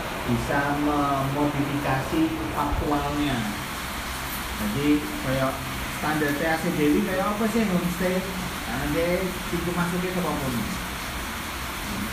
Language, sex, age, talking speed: Indonesian, male, 40-59, 100 wpm